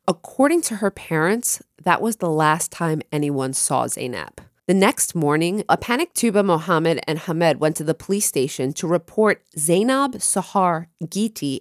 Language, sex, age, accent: English, female, 30-49, American